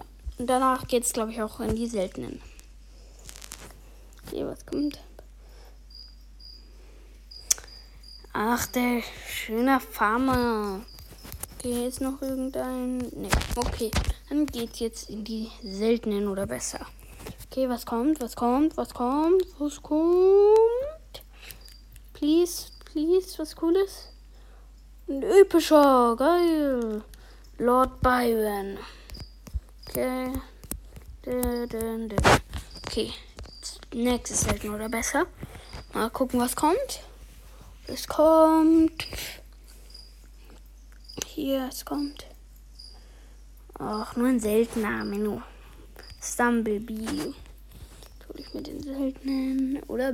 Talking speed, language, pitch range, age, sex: 95 wpm, German, 215-295 Hz, 20-39, female